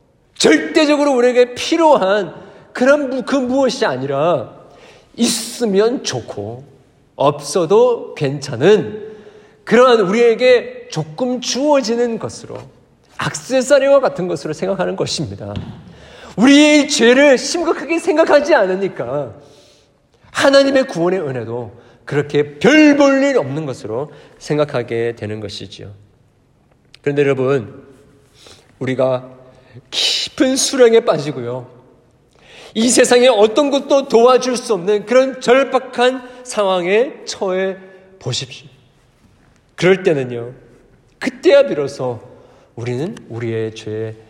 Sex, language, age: male, Korean, 50-69